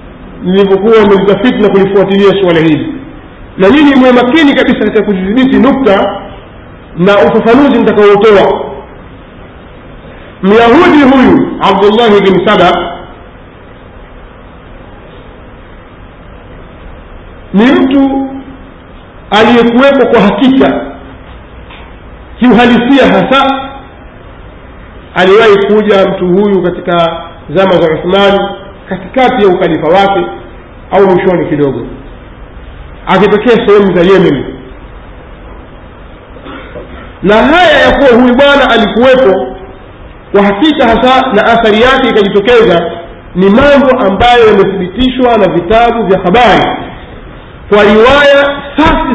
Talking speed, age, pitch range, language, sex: 90 wpm, 50-69, 175-250 Hz, Swahili, male